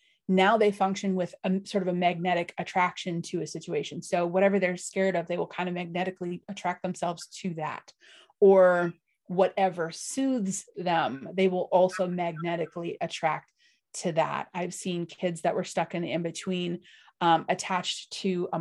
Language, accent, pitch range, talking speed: English, American, 175-200 Hz, 160 wpm